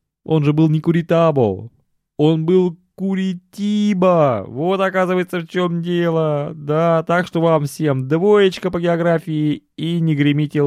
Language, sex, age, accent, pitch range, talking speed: Russian, male, 20-39, native, 100-165 Hz, 135 wpm